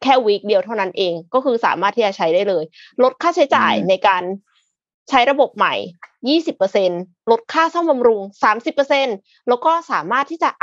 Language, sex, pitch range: Thai, female, 200-275 Hz